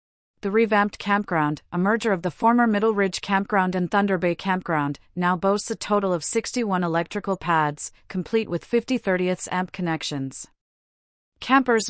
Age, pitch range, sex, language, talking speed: 30-49, 165-200 Hz, female, English, 150 wpm